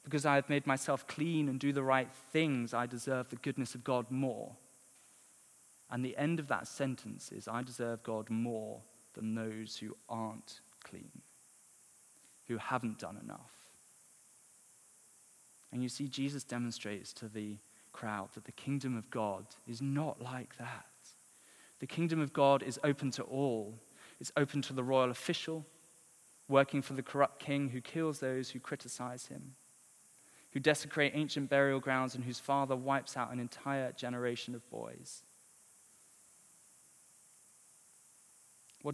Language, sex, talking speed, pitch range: English, male, 150 wpm, 125-145 Hz